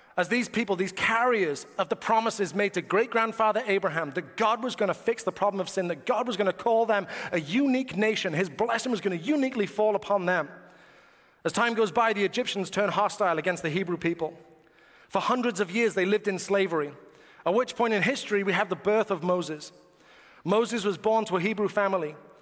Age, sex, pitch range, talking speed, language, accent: 30-49, male, 180-225 Hz, 210 wpm, English, British